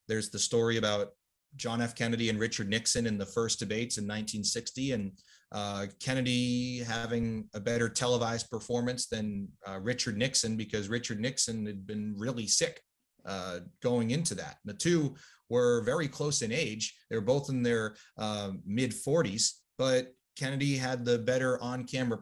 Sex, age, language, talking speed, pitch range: male, 30-49, English, 160 wpm, 110-130 Hz